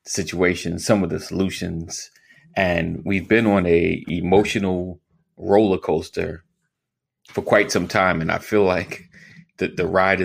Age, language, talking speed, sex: 30-49, English, 140 wpm, male